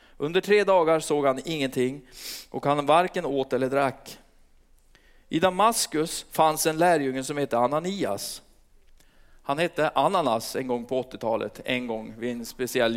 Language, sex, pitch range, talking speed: Swedish, male, 125-160 Hz, 150 wpm